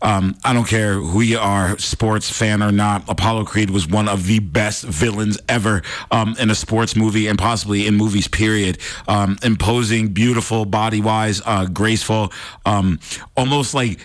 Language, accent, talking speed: English, American, 160 wpm